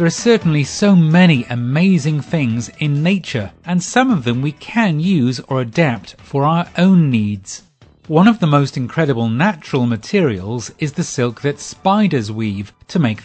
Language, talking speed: English, 170 wpm